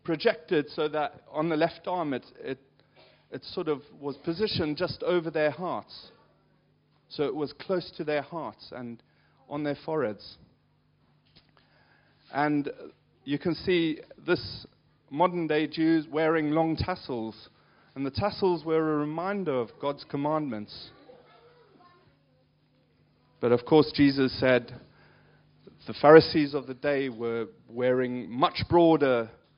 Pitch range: 120-160 Hz